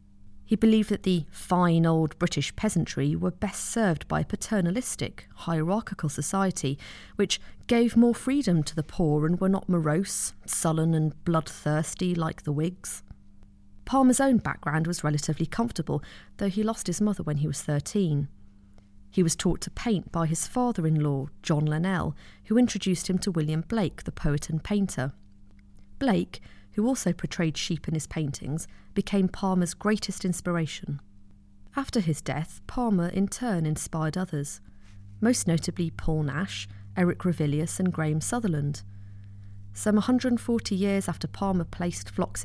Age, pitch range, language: 40-59, 150-200 Hz, English